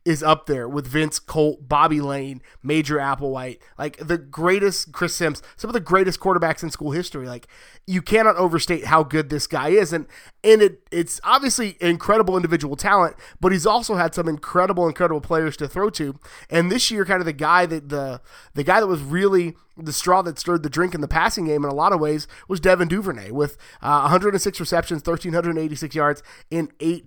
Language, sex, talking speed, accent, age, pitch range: English, male, 200 wpm, American, 30-49, 155-185 Hz